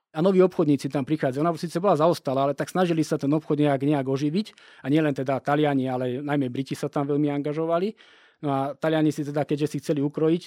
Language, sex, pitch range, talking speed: Slovak, male, 135-160 Hz, 220 wpm